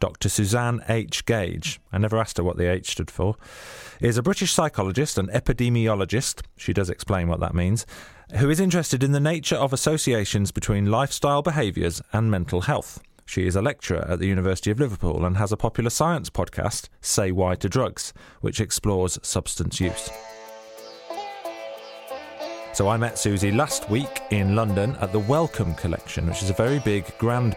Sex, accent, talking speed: male, British, 175 wpm